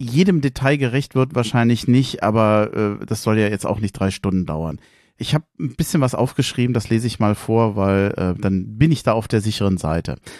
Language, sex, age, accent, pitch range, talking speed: German, male, 40-59, German, 110-150 Hz, 220 wpm